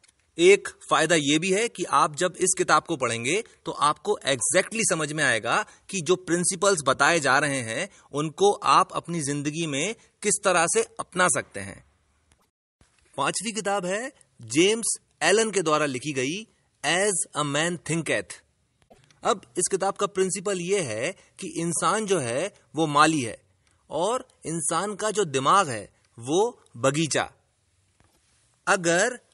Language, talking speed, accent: Hindi, 150 wpm, native